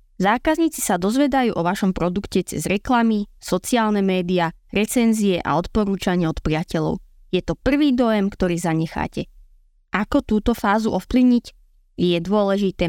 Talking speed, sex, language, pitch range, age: 125 wpm, female, Slovak, 180-225 Hz, 20-39